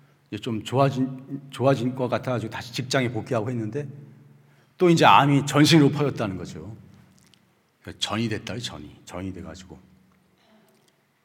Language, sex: Korean, male